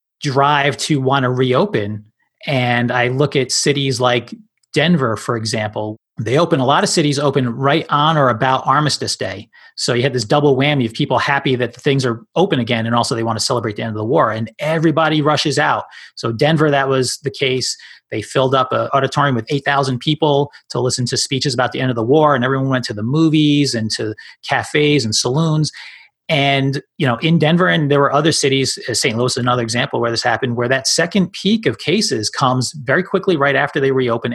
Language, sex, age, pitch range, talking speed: English, male, 30-49, 125-155 Hz, 215 wpm